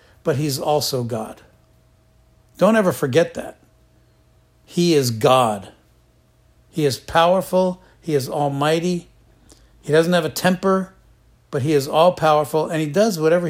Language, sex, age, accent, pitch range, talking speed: English, male, 60-79, American, 140-175 Hz, 135 wpm